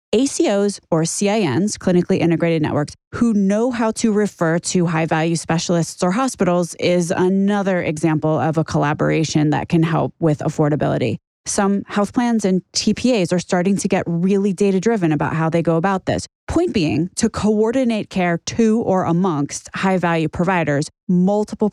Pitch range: 160-215 Hz